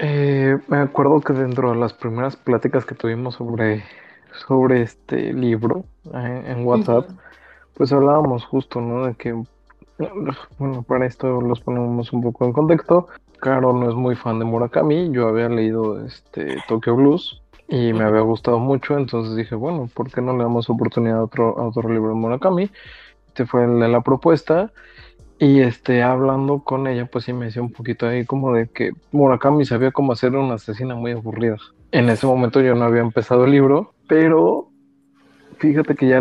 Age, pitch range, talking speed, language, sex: 20-39, 120-135 Hz, 180 wpm, Spanish, male